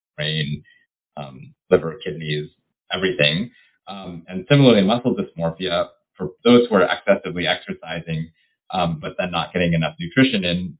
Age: 30-49